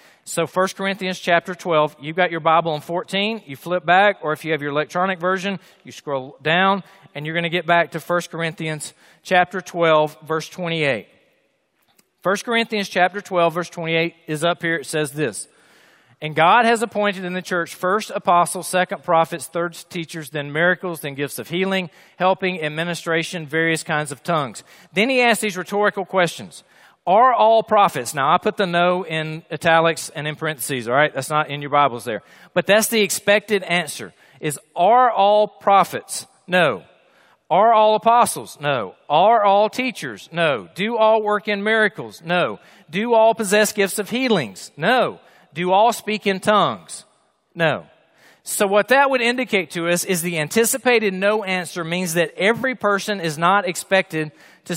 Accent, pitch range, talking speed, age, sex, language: American, 160-205 Hz, 175 wpm, 40-59, male, English